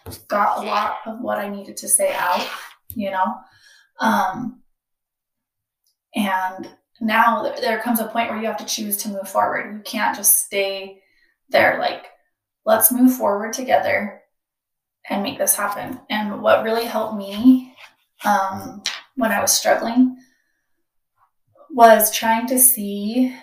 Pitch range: 205-240 Hz